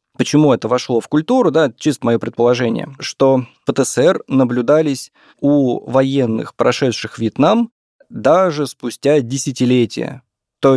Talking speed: 110 wpm